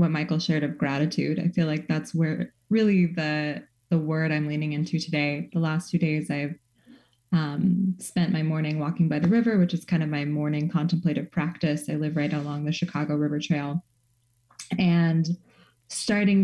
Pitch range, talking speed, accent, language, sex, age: 150-175 Hz, 175 wpm, American, English, female, 20-39